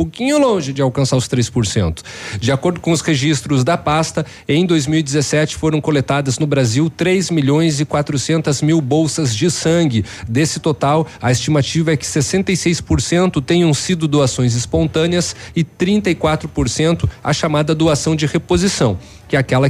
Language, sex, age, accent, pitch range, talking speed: Portuguese, male, 40-59, Brazilian, 130-160 Hz, 150 wpm